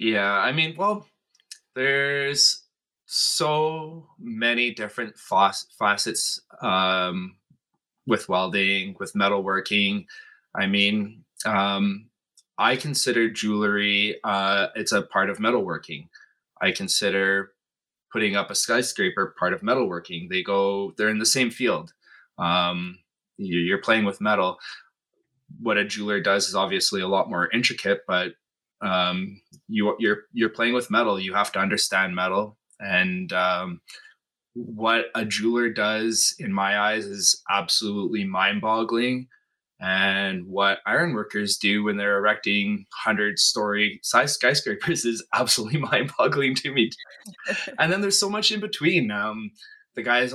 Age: 20-39